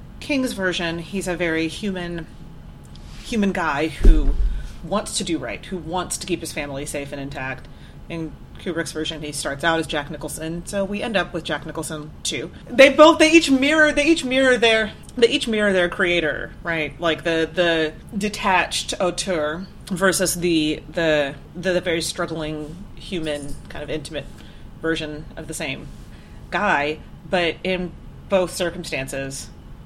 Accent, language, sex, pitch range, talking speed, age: American, English, female, 155-195 Hz, 160 wpm, 30-49